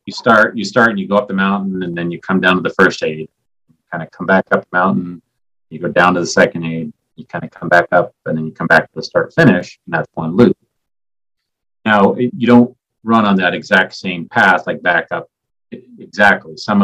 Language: English